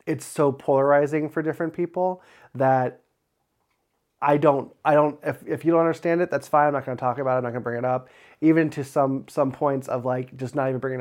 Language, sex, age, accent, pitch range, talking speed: English, male, 20-39, American, 130-145 Hz, 230 wpm